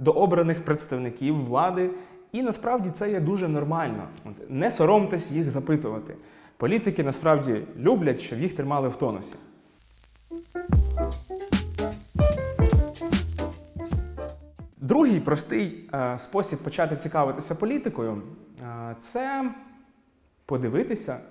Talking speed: 95 wpm